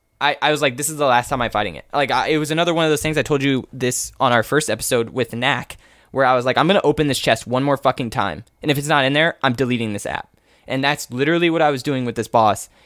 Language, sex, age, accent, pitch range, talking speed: English, male, 10-29, American, 125-160 Hz, 305 wpm